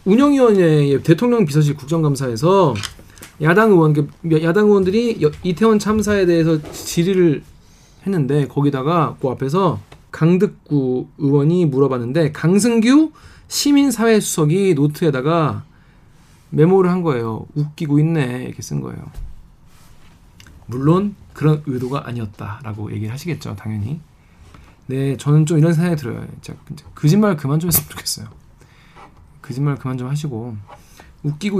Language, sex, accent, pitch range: Korean, male, native, 130-175 Hz